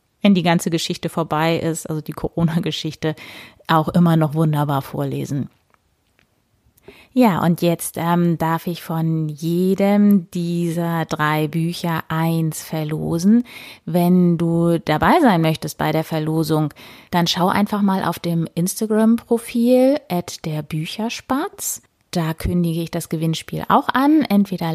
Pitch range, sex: 160-200 Hz, female